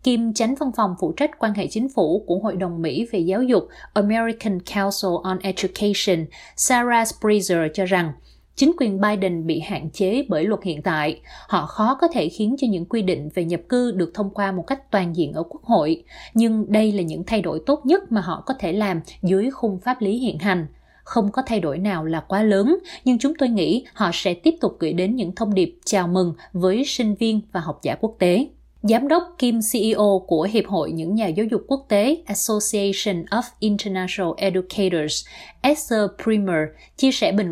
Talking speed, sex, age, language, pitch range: 205 wpm, female, 20-39, Vietnamese, 185-235 Hz